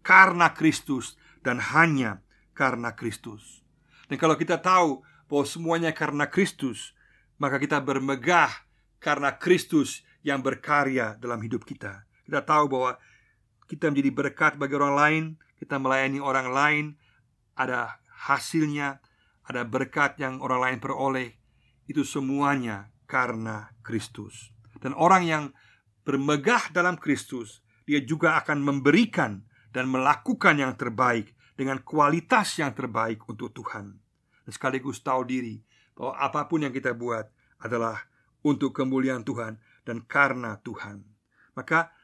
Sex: male